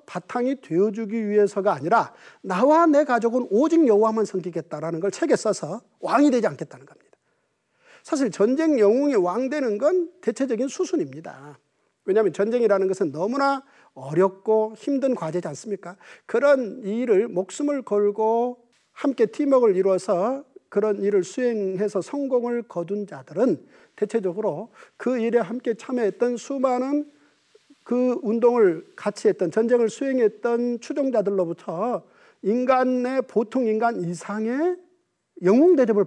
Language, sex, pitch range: Korean, male, 205-275 Hz